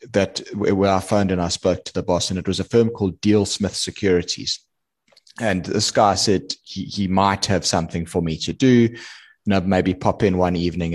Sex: male